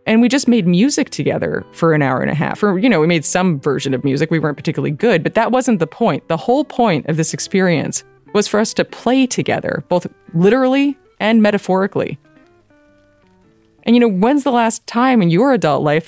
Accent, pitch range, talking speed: American, 160-235 Hz, 215 wpm